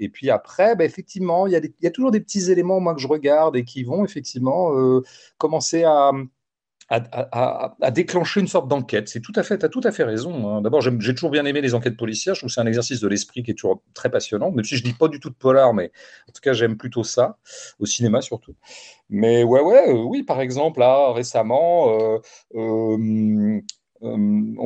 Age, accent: 40-59, French